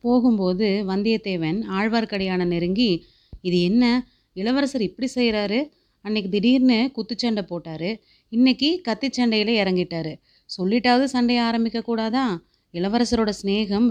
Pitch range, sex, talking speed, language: 190-230 Hz, female, 95 wpm, Tamil